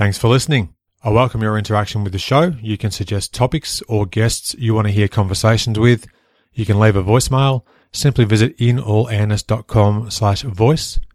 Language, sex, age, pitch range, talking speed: English, male, 30-49, 105-120 Hz, 165 wpm